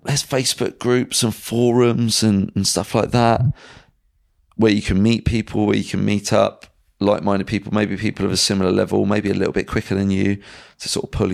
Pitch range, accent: 95-120 Hz, British